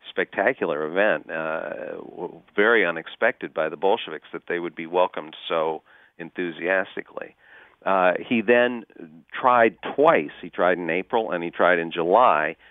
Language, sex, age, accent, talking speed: English, male, 50-69, American, 135 wpm